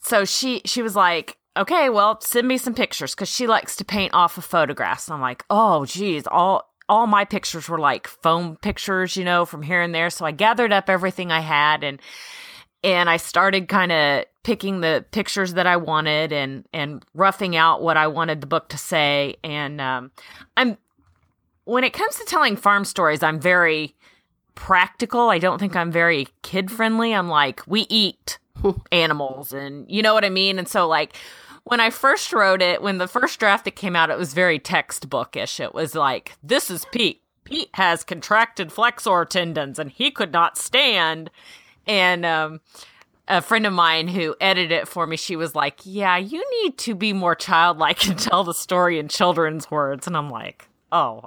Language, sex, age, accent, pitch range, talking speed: English, female, 30-49, American, 160-210 Hz, 195 wpm